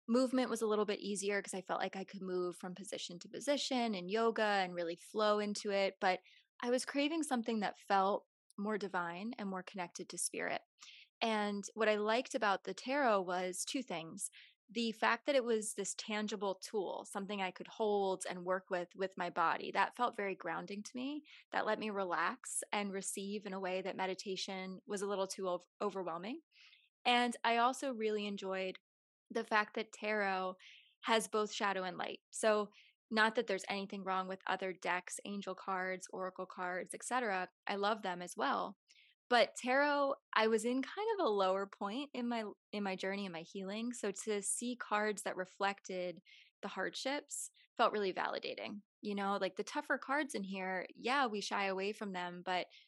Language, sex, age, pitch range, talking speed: English, female, 20-39, 190-230 Hz, 185 wpm